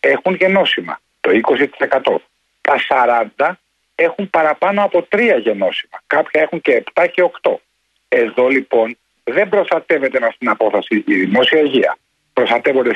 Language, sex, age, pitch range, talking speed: Greek, male, 60-79, 150-195 Hz, 130 wpm